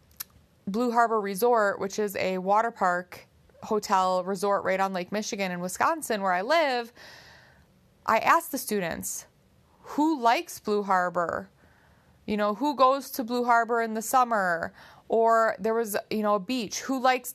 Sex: female